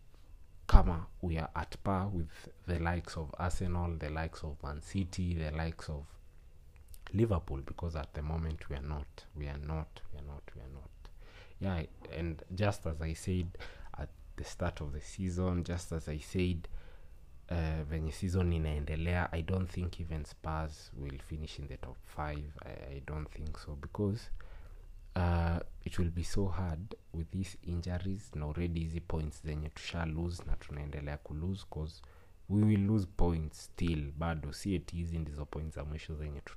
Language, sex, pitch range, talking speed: English, male, 75-90 Hz, 185 wpm